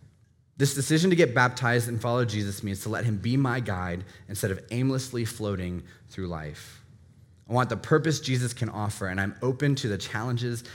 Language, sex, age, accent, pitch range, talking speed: English, male, 20-39, American, 105-135 Hz, 190 wpm